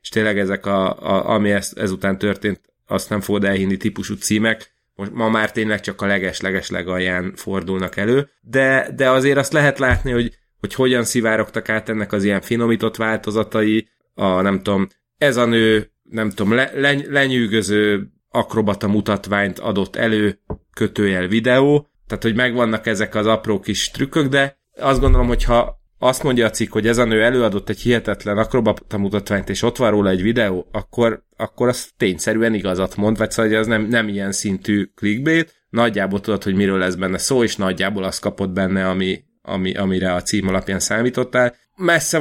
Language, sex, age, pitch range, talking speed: Hungarian, male, 30-49, 100-115 Hz, 175 wpm